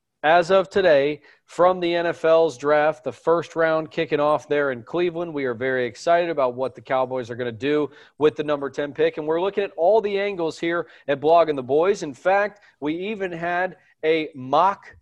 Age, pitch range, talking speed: 40-59, 140-175 Hz, 205 wpm